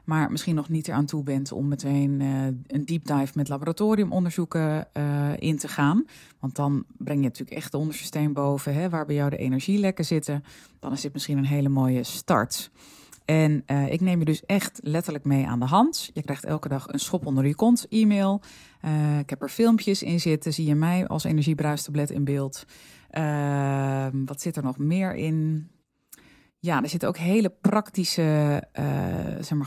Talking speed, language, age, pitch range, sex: 190 wpm, Dutch, 20-39, 140-175 Hz, female